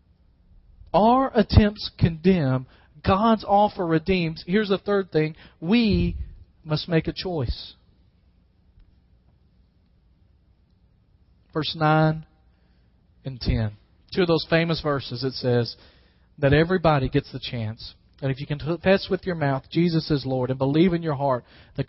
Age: 40-59